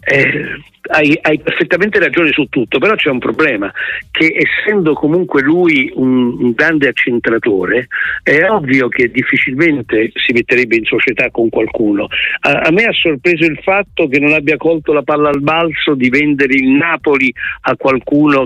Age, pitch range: 60-79, 125-155 Hz